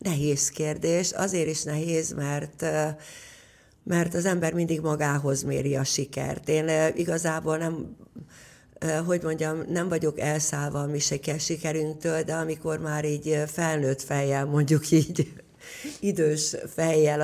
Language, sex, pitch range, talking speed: Hungarian, female, 135-160 Hz, 120 wpm